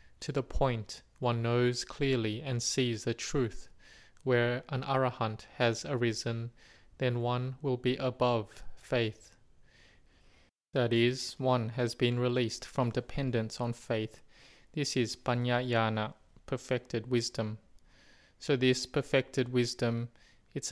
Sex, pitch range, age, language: male, 115-130 Hz, 20-39, English